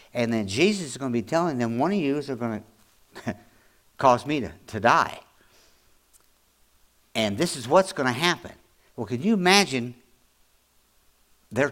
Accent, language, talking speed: American, English, 165 wpm